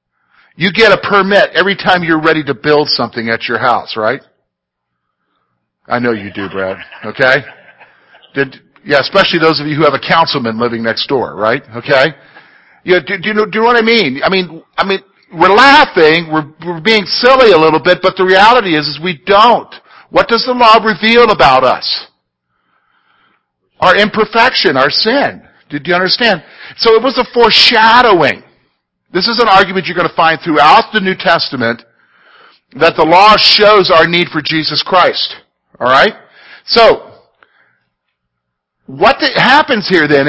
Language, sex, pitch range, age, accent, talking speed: English, male, 145-205 Hz, 50-69, American, 165 wpm